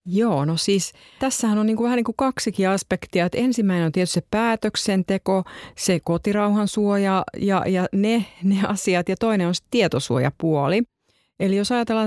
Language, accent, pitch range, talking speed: Finnish, native, 175-215 Hz, 155 wpm